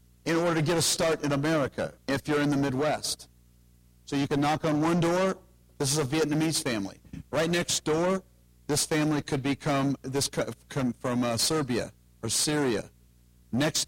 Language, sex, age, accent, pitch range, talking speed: English, male, 50-69, American, 110-165 Hz, 175 wpm